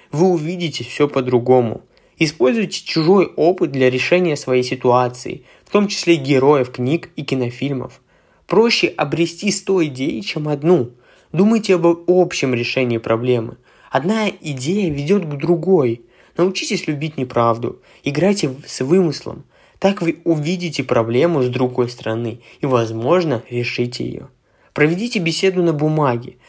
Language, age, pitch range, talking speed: Russian, 20-39, 125-175 Hz, 125 wpm